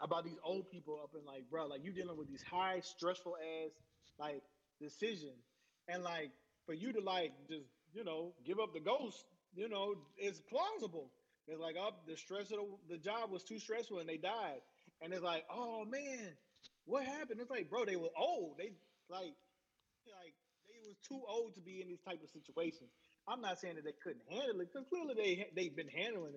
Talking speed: 205 wpm